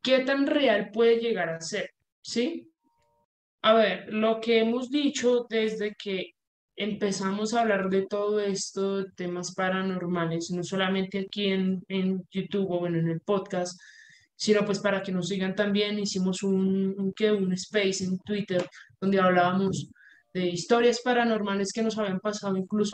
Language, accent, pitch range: Spanish, Colombian, 190-235 Hz